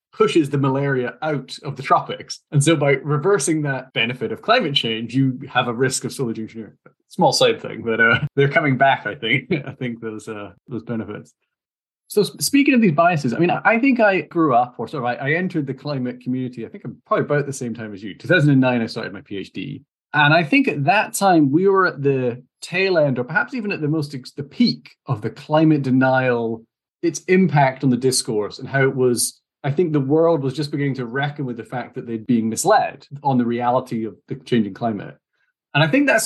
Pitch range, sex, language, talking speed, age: 120-155 Hz, male, English, 220 wpm, 20-39